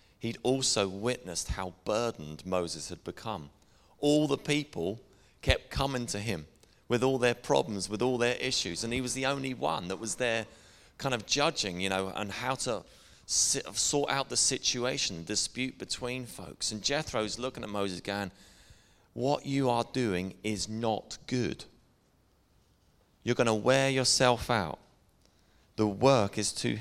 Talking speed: 160 wpm